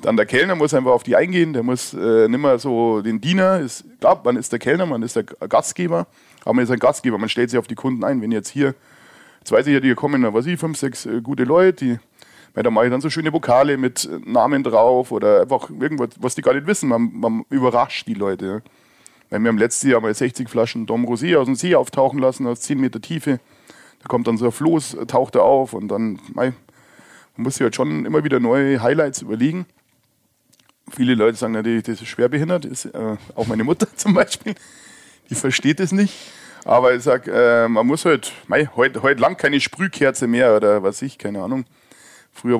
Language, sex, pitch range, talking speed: German, male, 115-155 Hz, 215 wpm